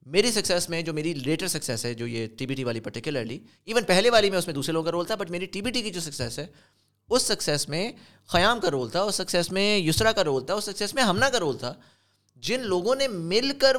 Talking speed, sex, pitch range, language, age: 265 wpm, male, 125-185 Hz, Urdu, 20-39